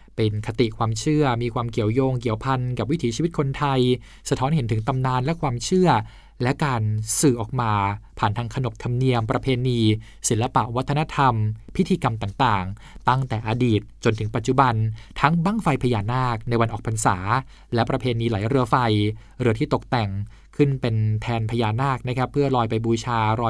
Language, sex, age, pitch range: Thai, male, 20-39, 110-140 Hz